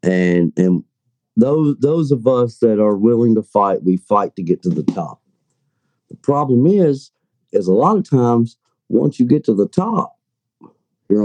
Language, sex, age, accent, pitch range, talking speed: English, male, 50-69, American, 110-155 Hz, 175 wpm